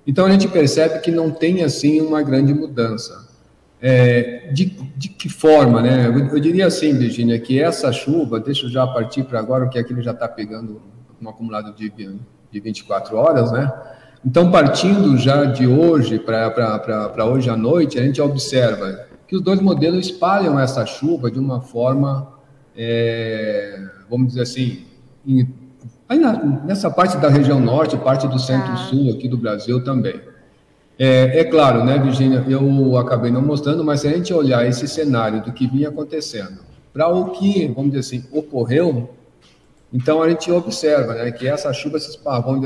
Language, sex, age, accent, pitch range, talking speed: Portuguese, male, 50-69, Brazilian, 120-150 Hz, 170 wpm